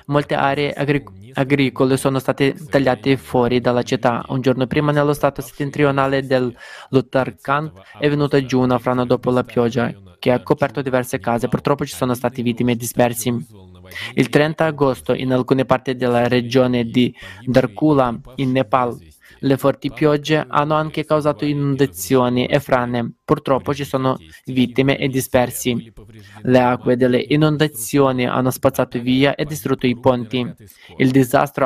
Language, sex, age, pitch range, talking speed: Italian, male, 20-39, 125-140 Hz, 145 wpm